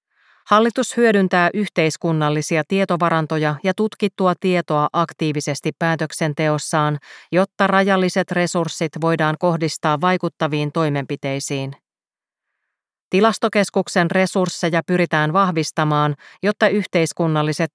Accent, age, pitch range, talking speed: native, 30-49, 150-185 Hz, 75 wpm